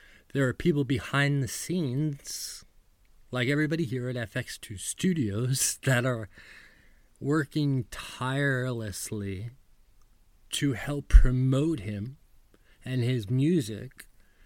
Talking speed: 95 wpm